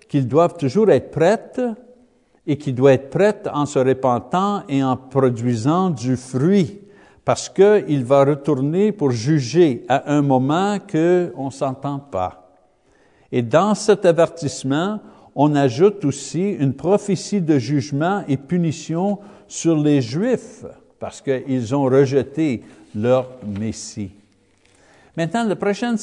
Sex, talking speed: male, 135 wpm